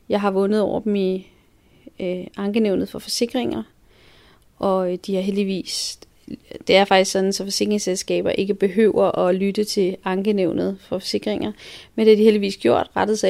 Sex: female